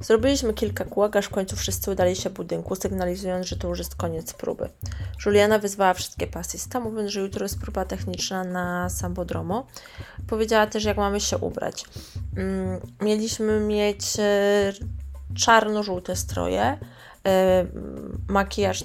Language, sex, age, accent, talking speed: Polish, female, 20-39, native, 135 wpm